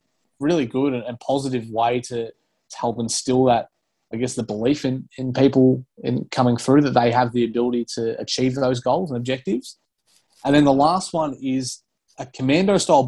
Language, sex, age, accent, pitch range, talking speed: English, male, 20-39, Australian, 120-140 Hz, 180 wpm